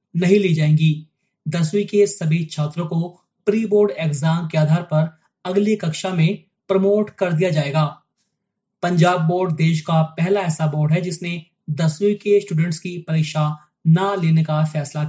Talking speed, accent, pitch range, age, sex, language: 65 wpm, native, 160-200 Hz, 20-39, male, Hindi